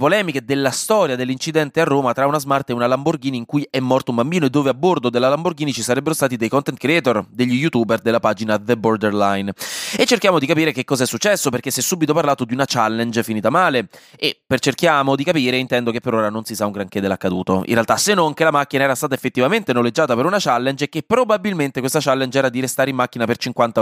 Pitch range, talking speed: 115-150 Hz, 240 wpm